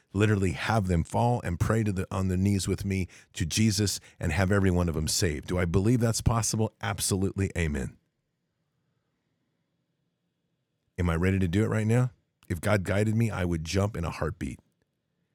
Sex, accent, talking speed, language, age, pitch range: male, American, 175 wpm, English, 40-59, 90-115 Hz